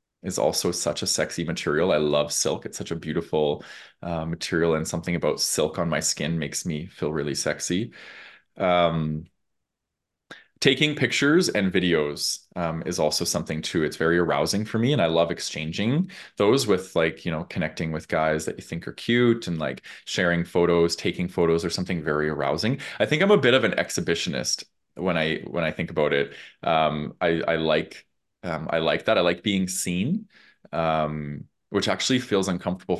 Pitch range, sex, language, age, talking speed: 80-95 Hz, male, English, 20-39, 185 wpm